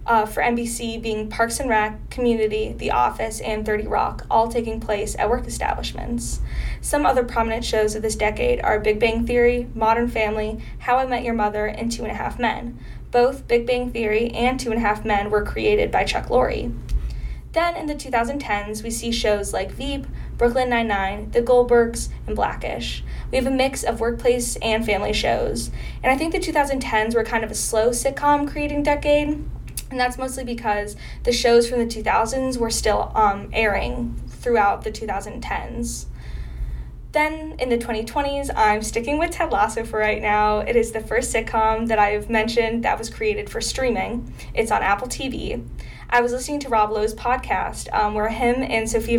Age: 10-29